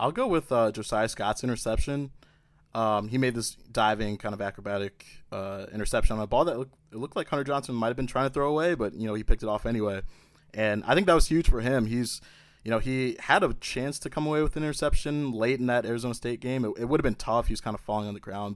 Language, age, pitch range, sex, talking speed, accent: English, 20-39, 100-125 Hz, male, 250 wpm, American